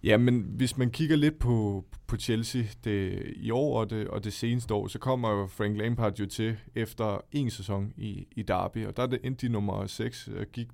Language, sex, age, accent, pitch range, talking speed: Danish, male, 20-39, native, 100-120 Hz, 220 wpm